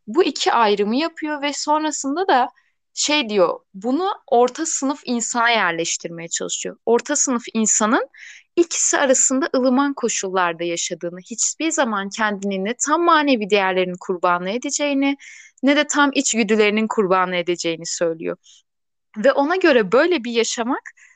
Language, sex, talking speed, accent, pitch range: Turkish, female, 130 wpm, native, 195-270 Hz